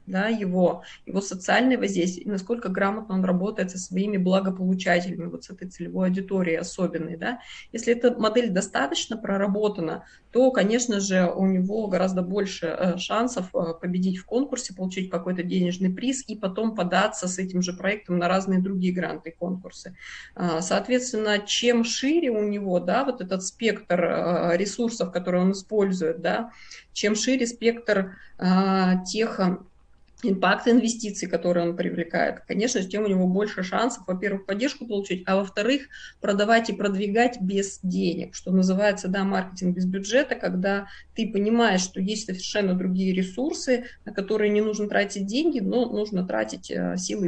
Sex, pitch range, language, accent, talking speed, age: female, 180-220 Hz, Russian, native, 150 wpm, 20-39